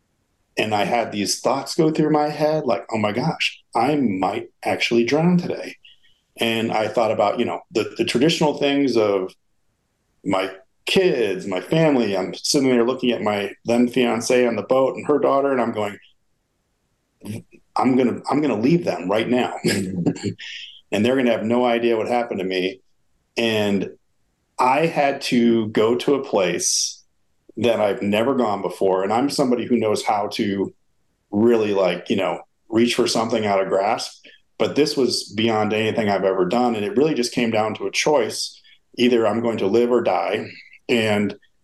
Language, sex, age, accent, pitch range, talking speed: English, male, 40-59, American, 105-130 Hz, 175 wpm